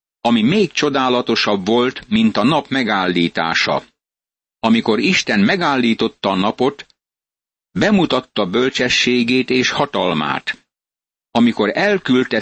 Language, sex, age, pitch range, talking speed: Hungarian, male, 60-79, 110-130 Hz, 90 wpm